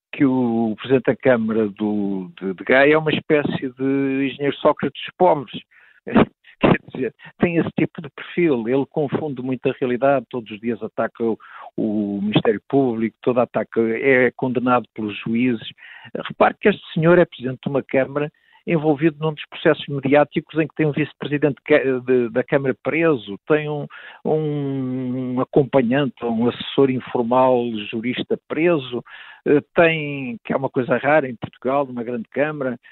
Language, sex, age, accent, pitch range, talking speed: Portuguese, male, 50-69, Portuguese, 125-160 Hz, 155 wpm